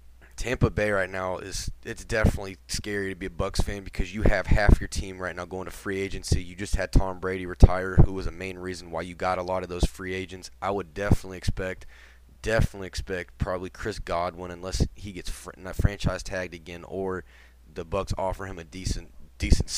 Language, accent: English, American